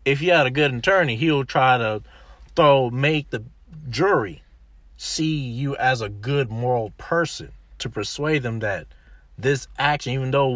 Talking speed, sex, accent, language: 160 wpm, male, American, English